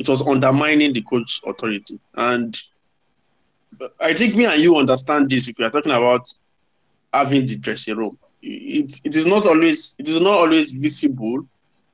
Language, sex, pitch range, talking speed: English, male, 125-160 Hz, 160 wpm